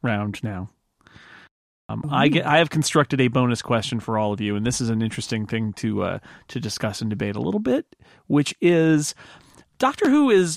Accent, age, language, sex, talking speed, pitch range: American, 40-59, English, male, 200 wpm, 125-180 Hz